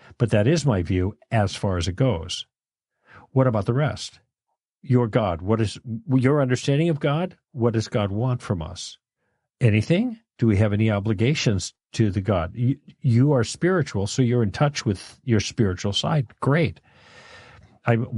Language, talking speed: English, 170 wpm